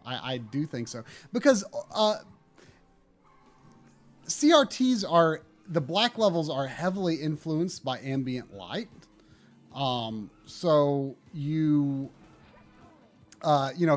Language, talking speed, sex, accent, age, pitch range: English, 105 wpm, male, American, 30-49, 125-155 Hz